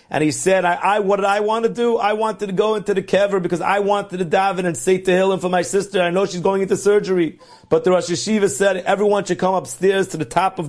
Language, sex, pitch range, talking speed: English, male, 160-200 Hz, 285 wpm